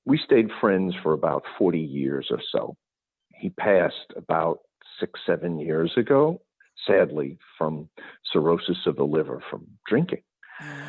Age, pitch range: 50-69, 95-125 Hz